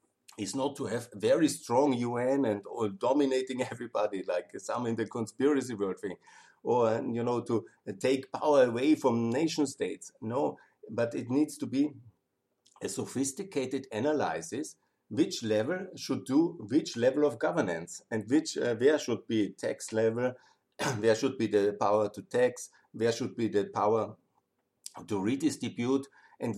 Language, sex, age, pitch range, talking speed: German, male, 50-69, 110-140 Hz, 155 wpm